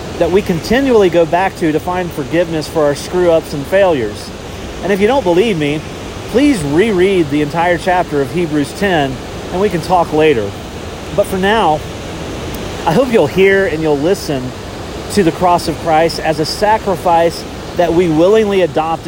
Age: 40-59